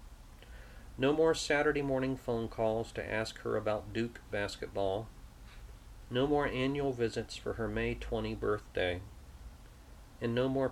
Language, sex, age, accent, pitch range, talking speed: English, male, 40-59, American, 85-125 Hz, 135 wpm